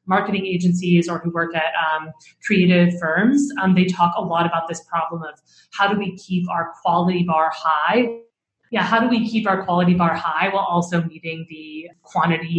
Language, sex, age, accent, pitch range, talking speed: English, female, 20-39, American, 160-185 Hz, 190 wpm